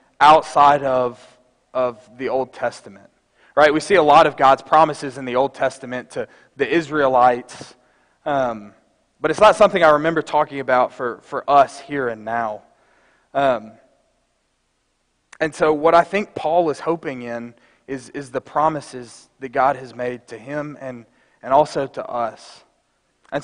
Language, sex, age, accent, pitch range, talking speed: English, male, 20-39, American, 125-155 Hz, 160 wpm